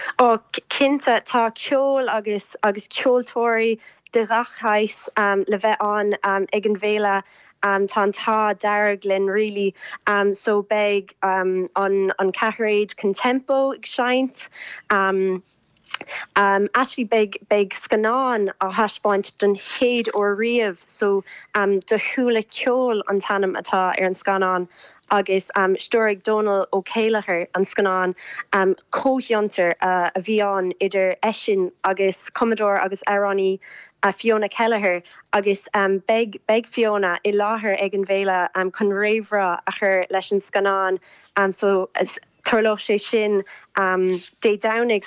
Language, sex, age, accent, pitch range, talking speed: English, female, 20-39, British, 195-220 Hz, 115 wpm